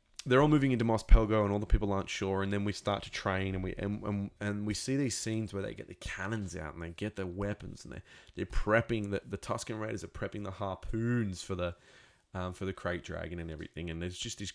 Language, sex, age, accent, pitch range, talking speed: English, male, 20-39, Australian, 95-110 Hz, 260 wpm